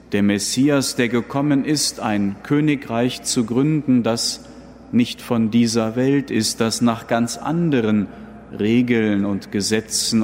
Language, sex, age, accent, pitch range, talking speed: German, male, 40-59, German, 110-145 Hz, 130 wpm